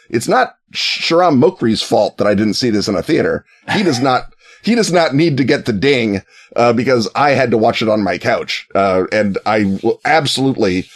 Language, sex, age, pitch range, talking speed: English, male, 30-49, 100-130 Hz, 215 wpm